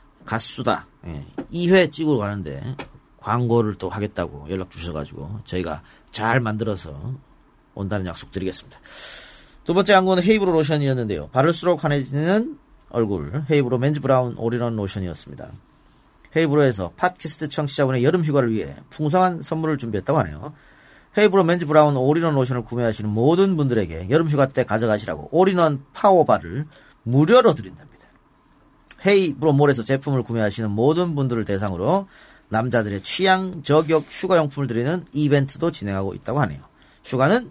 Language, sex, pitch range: Korean, male, 105-155 Hz